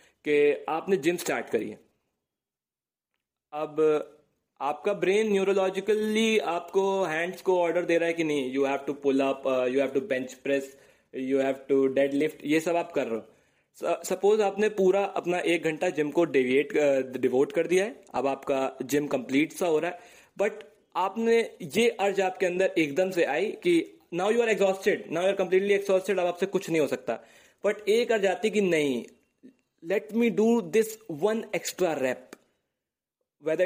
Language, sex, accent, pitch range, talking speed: Hindi, male, native, 165-230 Hz, 180 wpm